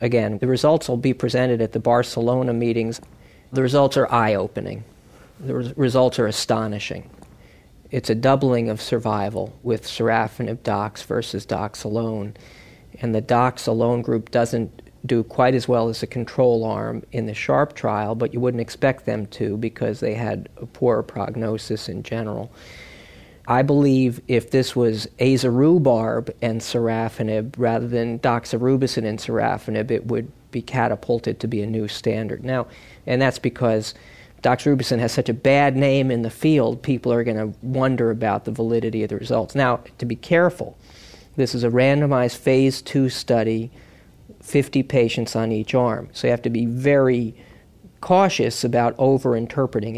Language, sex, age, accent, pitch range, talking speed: English, male, 40-59, American, 115-130 Hz, 160 wpm